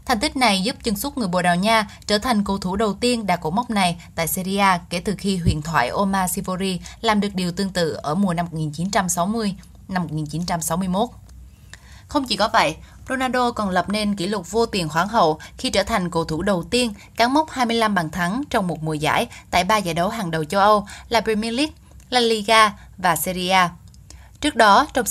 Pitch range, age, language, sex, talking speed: 175-230 Hz, 10-29, Vietnamese, female, 210 wpm